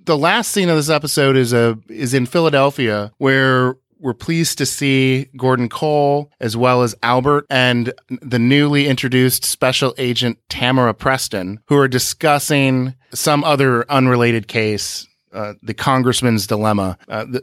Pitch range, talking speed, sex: 105-130 Hz, 145 wpm, male